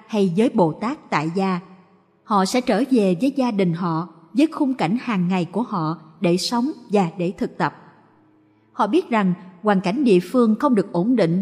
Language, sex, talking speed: Vietnamese, female, 200 wpm